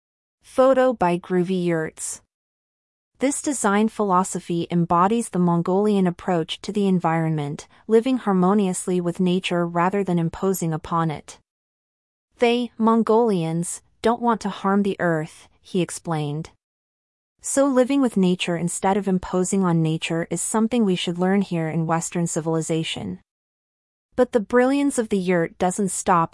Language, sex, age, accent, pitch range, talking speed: English, female, 30-49, American, 165-210 Hz, 135 wpm